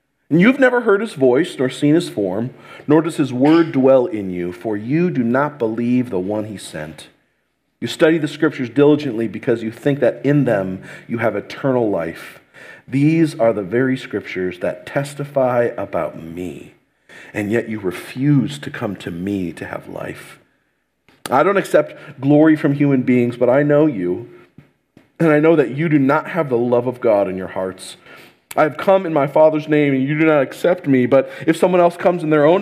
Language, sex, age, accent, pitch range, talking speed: English, male, 40-59, American, 105-150 Hz, 195 wpm